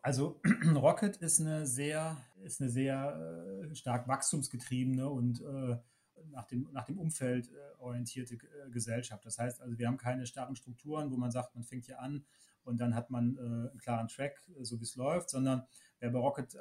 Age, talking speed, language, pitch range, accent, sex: 30-49, 175 wpm, German, 120-140 Hz, German, male